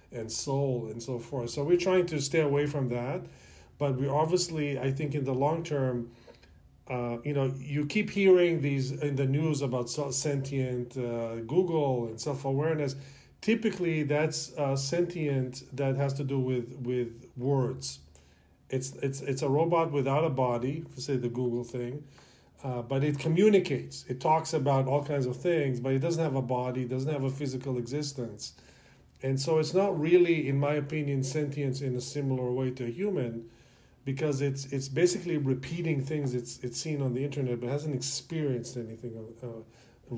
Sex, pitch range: male, 125-145 Hz